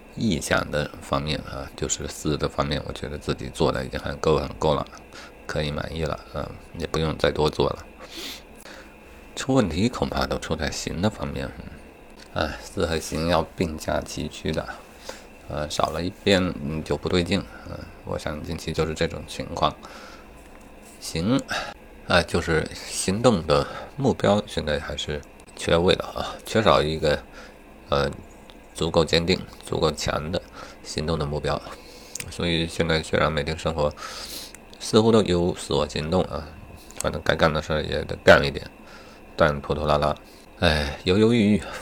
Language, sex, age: Chinese, male, 50-69